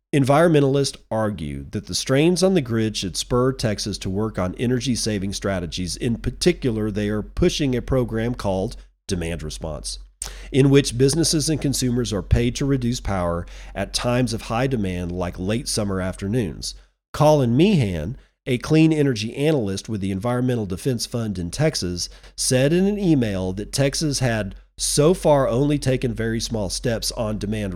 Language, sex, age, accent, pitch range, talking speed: English, male, 40-59, American, 100-145 Hz, 160 wpm